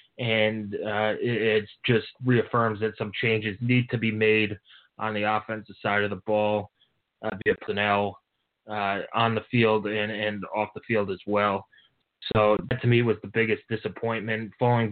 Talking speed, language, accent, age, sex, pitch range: 175 wpm, English, American, 20-39, male, 105-115 Hz